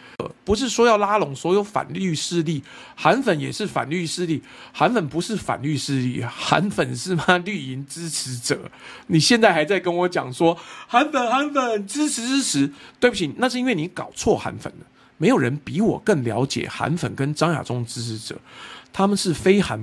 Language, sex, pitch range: Chinese, male, 135-205 Hz